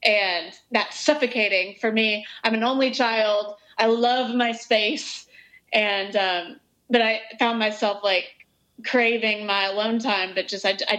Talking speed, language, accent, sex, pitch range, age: 155 wpm, English, American, female, 210-250 Hz, 20-39